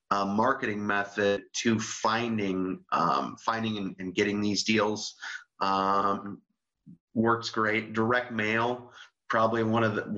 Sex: male